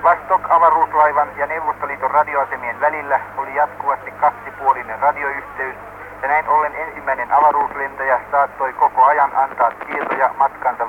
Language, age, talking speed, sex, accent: Finnish, 50-69, 110 wpm, male, native